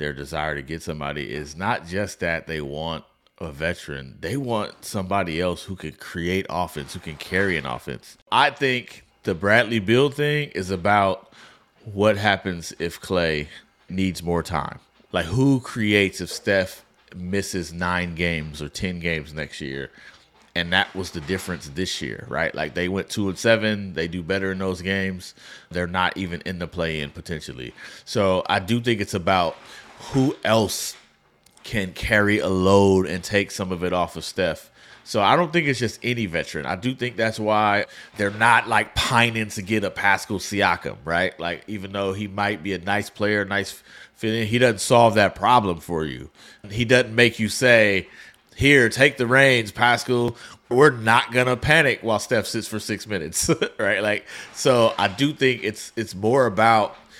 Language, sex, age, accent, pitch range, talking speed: English, male, 30-49, American, 85-110 Hz, 180 wpm